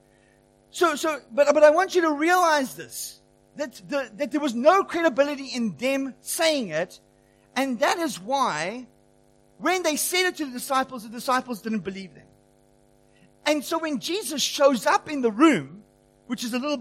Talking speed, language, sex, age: 180 wpm, English, male, 50-69